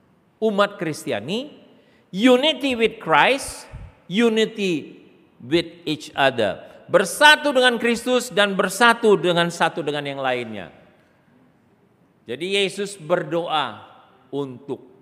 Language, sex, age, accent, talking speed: Indonesian, male, 50-69, native, 90 wpm